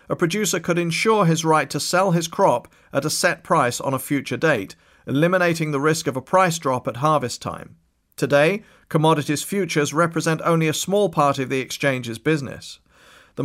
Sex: male